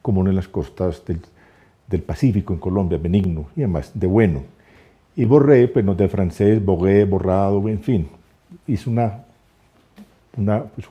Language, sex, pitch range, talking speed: Spanish, male, 85-105 Hz, 155 wpm